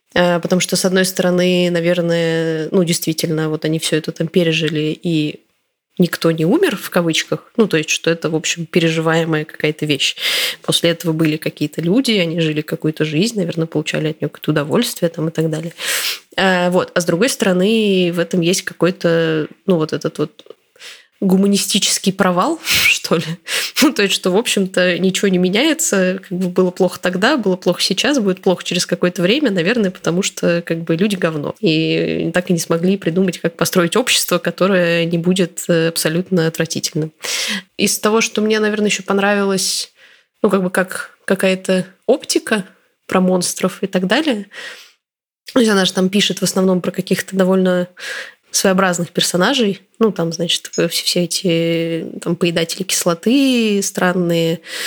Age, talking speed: 20-39, 165 wpm